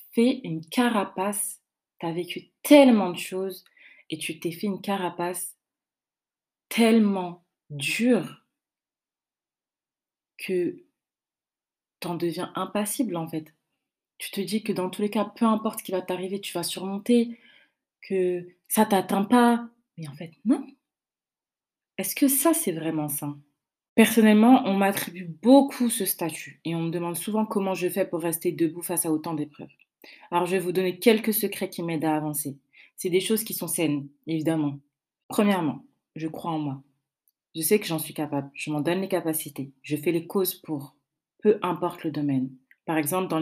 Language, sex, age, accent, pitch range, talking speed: French, female, 30-49, French, 155-205 Hz, 165 wpm